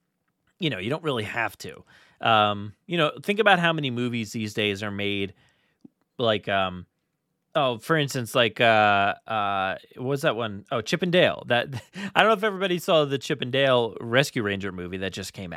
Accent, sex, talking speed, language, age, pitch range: American, male, 195 wpm, English, 30-49, 110-165 Hz